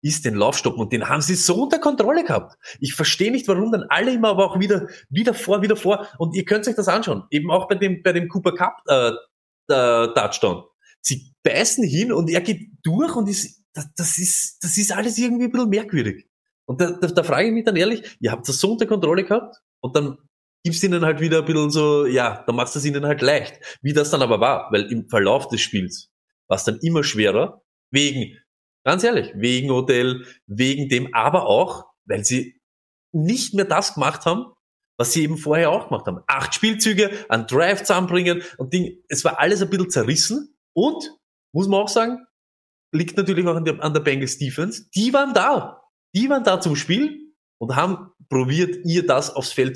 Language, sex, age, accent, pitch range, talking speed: German, male, 20-39, German, 140-205 Hz, 205 wpm